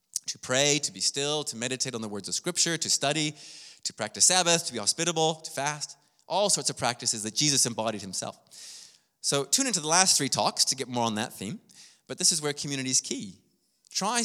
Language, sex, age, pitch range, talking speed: English, male, 20-39, 120-170 Hz, 215 wpm